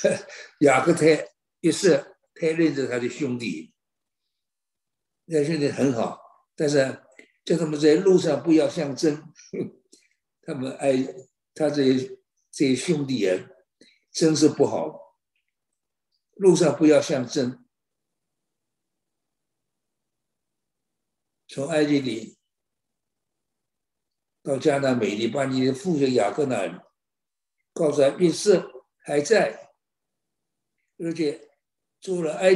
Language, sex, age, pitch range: Chinese, male, 60-79, 130-175 Hz